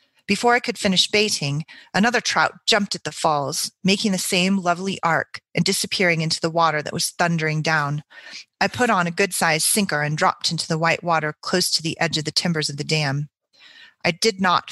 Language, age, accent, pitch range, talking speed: English, 30-49, American, 155-190 Hz, 205 wpm